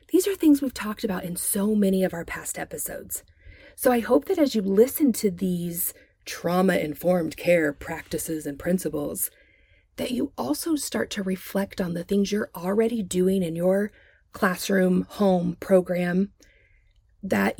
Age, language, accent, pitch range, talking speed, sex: 30-49, English, American, 155-215 Hz, 155 wpm, female